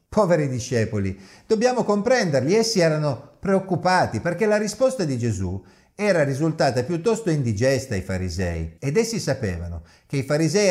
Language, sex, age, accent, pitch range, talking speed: Italian, male, 50-69, native, 110-165 Hz, 135 wpm